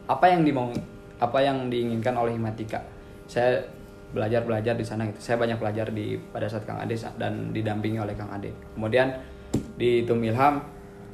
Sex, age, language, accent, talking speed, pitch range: male, 20-39, Indonesian, native, 155 wpm, 100-125 Hz